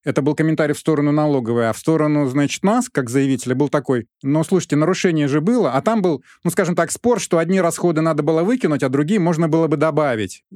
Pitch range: 135-175 Hz